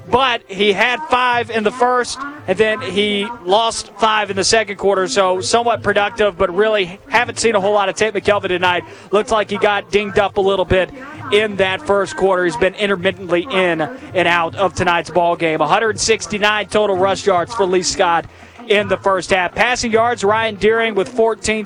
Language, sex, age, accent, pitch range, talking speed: English, male, 30-49, American, 185-220 Hz, 190 wpm